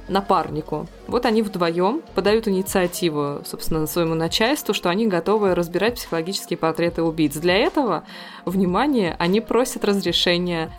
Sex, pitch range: female, 160-195 Hz